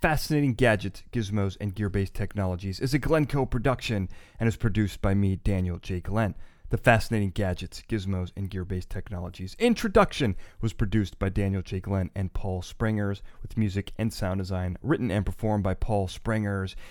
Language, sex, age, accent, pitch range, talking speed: English, male, 30-49, American, 95-120 Hz, 170 wpm